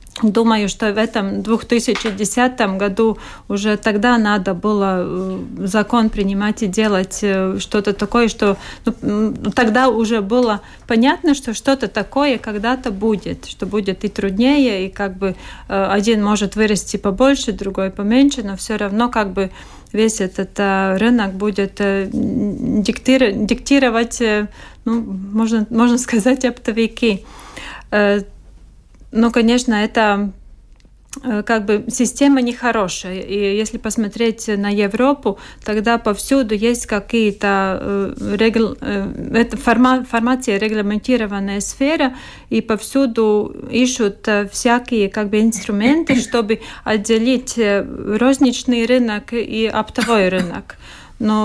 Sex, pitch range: female, 205-235 Hz